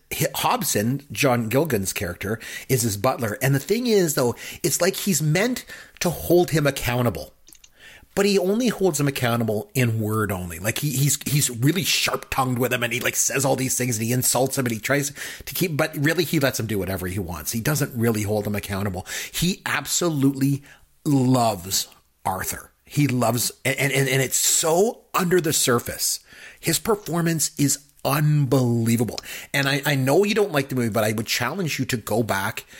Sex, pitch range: male, 110-145 Hz